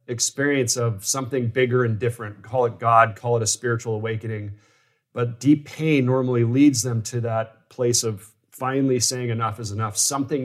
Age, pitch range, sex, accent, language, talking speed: 40-59, 110-130 Hz, male, American, English, 170 wpm